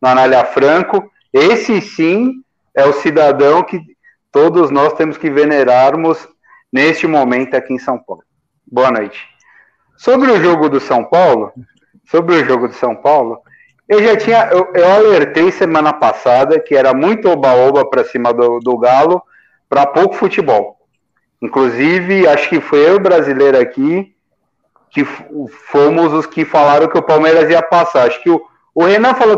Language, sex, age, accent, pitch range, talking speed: Portuguese, male, 40-59, Brazilian, 135-185 Hz, 155 wpm